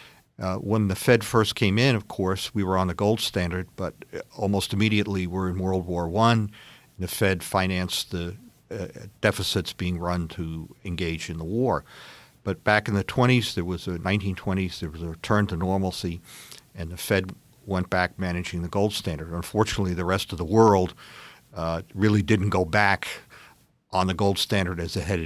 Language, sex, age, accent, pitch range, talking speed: English, male, 50-69, American, 90-105 Hz, 190 wpm